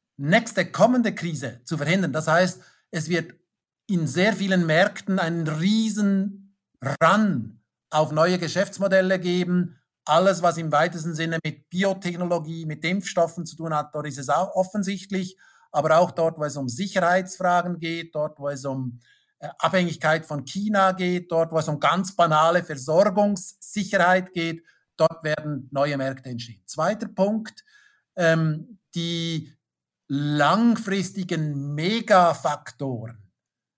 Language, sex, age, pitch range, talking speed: German, male, 50-69, 150-185 Hz, 130 wpm